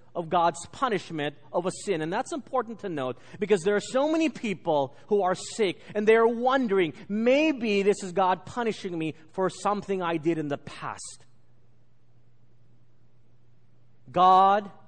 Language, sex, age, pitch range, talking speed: English, male, 40-59, 130-205 Hz, 150 wpm